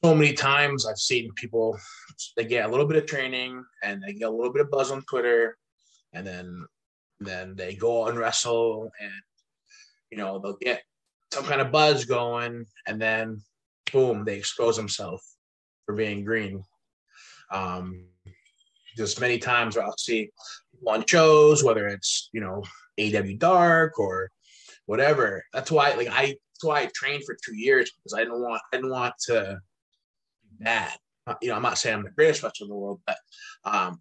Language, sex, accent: English, male, American